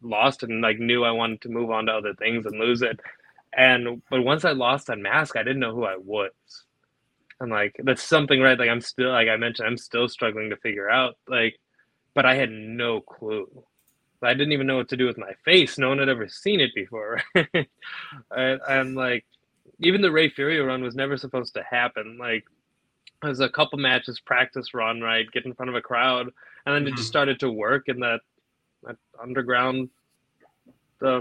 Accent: American